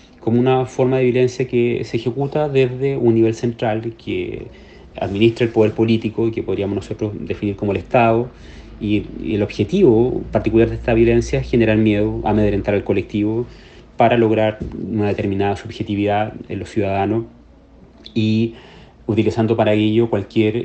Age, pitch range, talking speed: 30-49, 100-115 Hz, 150 wpm